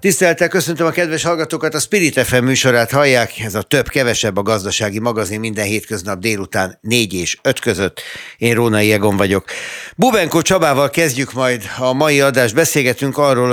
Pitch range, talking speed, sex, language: 100-125 Hz, 165 wpm, male, Hungarian